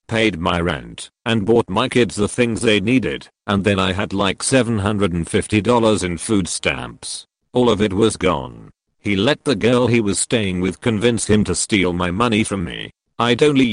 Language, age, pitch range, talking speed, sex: English, 50-69, 100-125 Hz, 190 wpm, male